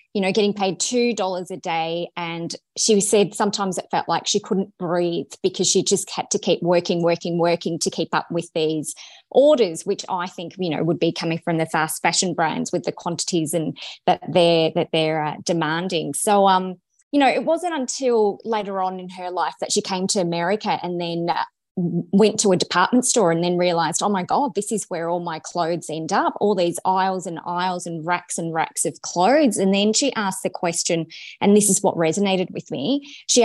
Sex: female